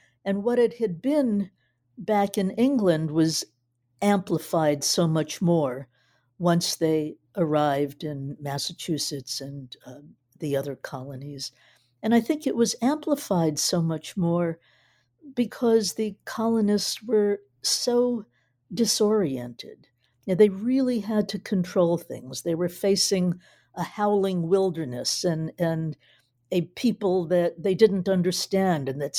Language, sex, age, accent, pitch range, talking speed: English, female, 60-79, American, 145-200 Hz, 125 wpm